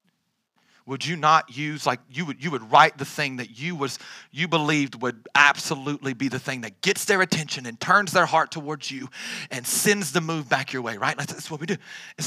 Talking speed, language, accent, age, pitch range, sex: 220 wpm, English, American, 40-59, 140-200 Hz, male